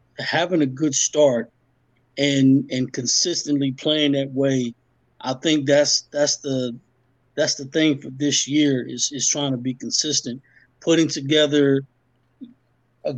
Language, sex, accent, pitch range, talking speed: English, male, American, 130-145 Hz, 135 wpm